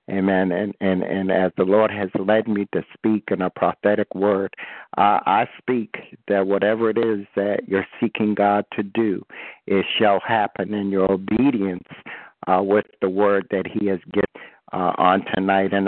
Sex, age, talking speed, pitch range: male, 60-79, 180 wpm, 100-110 Hz